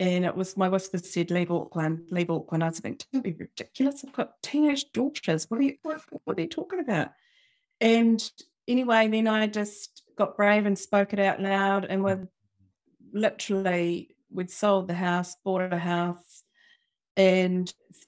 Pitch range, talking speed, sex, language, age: 185-225 Hz, 175 wpm, female, English, 30-49